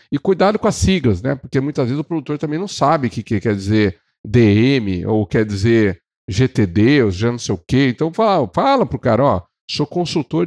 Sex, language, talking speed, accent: male, Portuguese, 210 wpm, Brazilian